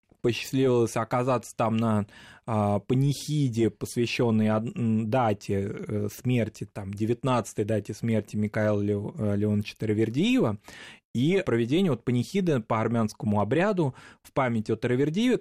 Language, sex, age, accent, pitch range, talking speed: Russian, male, 20-39, native, 105-130 Hz, 95 wpm